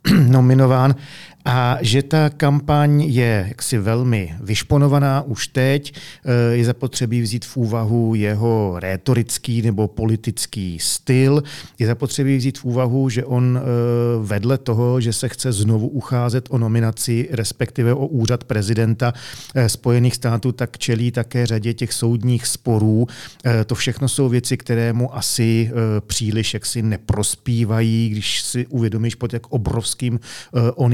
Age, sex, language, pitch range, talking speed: 40-59, male, Czech, 115-130 Hz, 130 wpm